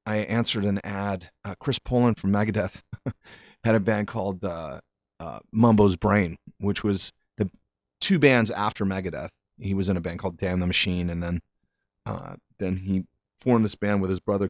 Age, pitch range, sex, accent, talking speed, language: 30-49, 95-115 Hz, male, American, 180 wpm, English